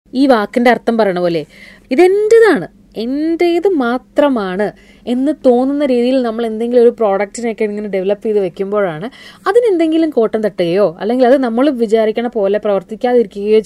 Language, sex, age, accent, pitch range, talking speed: Malayalam, female, 20-39, native, 205-280 Hz, 125 wpm